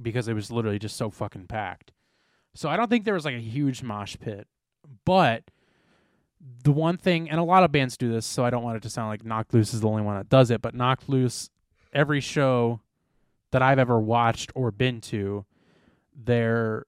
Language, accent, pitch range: English, American, 115-140 Hz